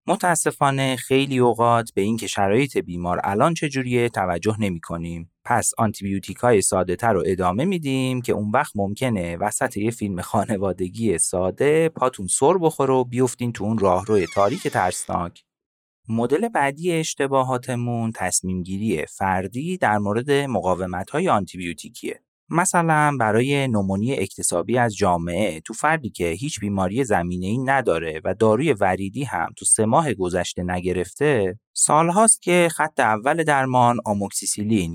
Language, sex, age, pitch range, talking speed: Persian, male, 30-49, 100-140 Hz, 135 wpm